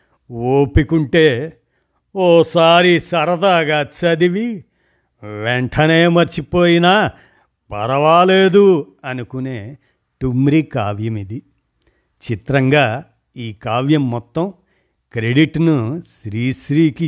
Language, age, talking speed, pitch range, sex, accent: Telugu, 50-69, 60 wpm, 115-160 Hz, male, native